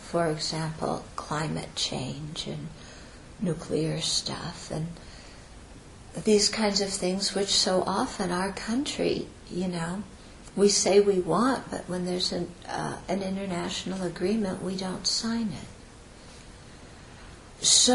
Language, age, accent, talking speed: English, 60-79, American, 120 wpm